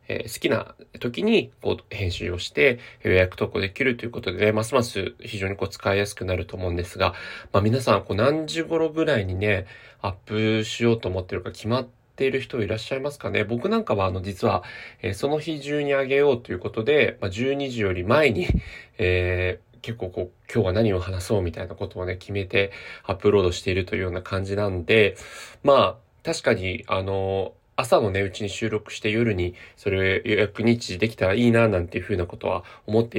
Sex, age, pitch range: male, 20-39, 95-120 Hz